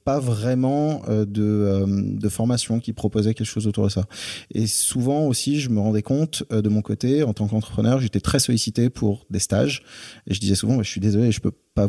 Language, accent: French, French